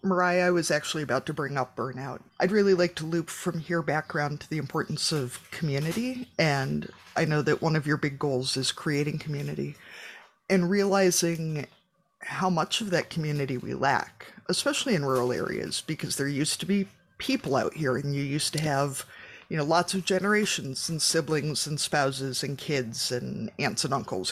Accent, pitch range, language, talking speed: American, 140-185 Hz, English, 185 wpm